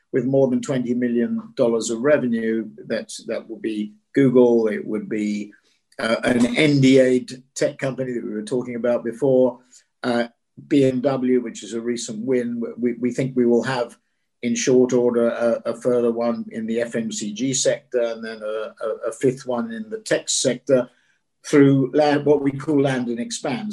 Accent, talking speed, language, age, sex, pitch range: British, 175 wpm, English, 50-69, male, 120-140 Hz